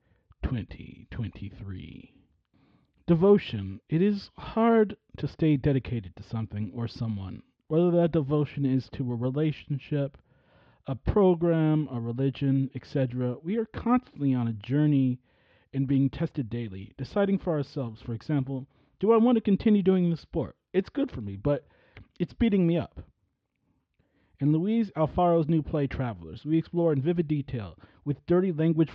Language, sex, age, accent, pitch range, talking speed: English, male, 30-49, American, 130-165 Hz, 145 wpm